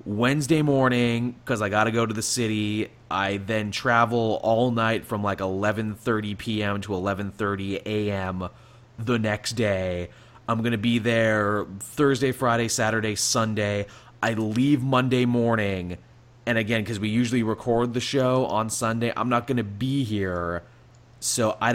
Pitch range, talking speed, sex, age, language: 100-120 Hz, 140 wpm, male, 20-39, English